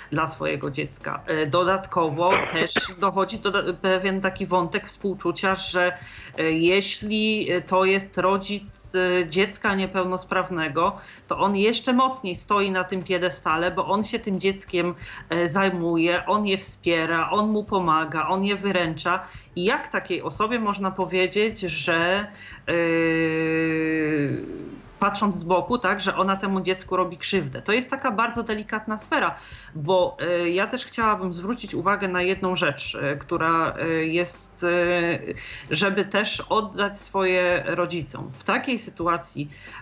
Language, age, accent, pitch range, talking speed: Polish, 40-59, native, 165-195 Hz, 125 wpm